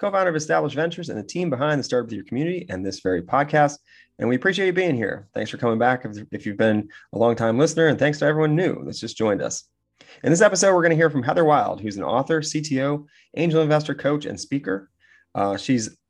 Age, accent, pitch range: 30-49, American, 105-145 Hz